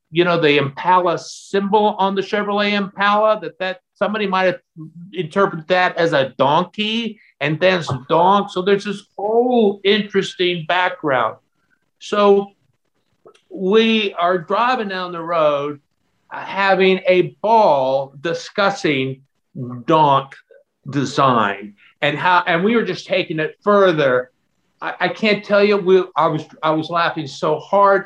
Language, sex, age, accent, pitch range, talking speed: English, male, 50-69, American, 155-205 Hz, 135 wpm